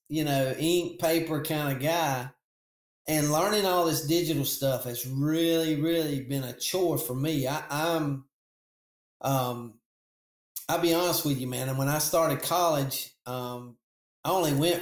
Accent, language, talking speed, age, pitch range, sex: American, English, 160 wpm, 40-59, 125-165 Hz, male